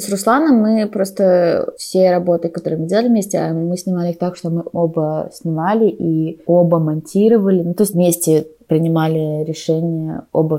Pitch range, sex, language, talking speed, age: 165-185 Hz, female, Russian, 160 wpm, 20-39